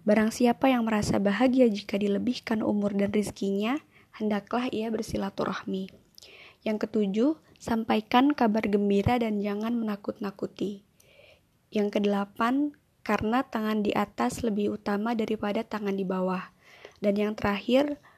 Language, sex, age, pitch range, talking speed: Indonesian, female, 20-39, 205-235 Hz, 120 wpm